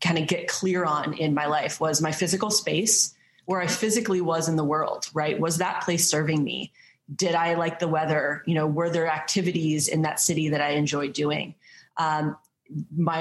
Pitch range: 150-170 Hz